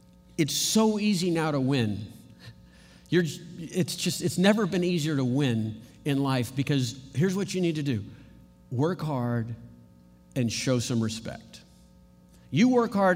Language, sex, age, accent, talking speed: English, male, 50-69, American, 145 wpm